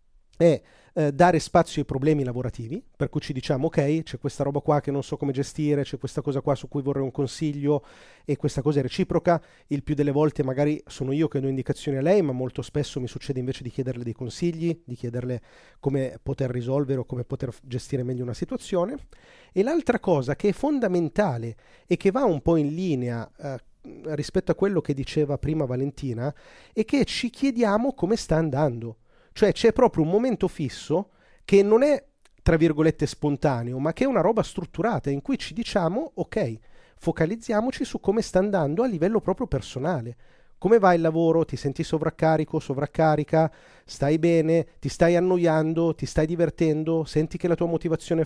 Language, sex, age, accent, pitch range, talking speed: Italian, male, 30-49, native, 140-175 Hz, 185 wpm